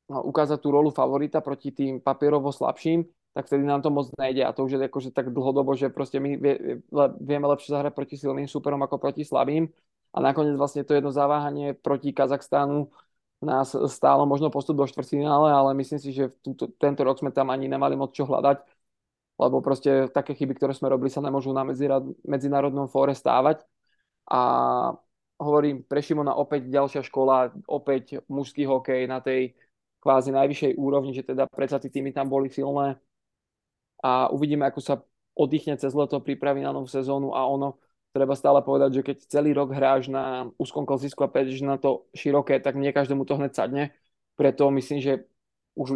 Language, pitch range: Czech, 135-140 Hz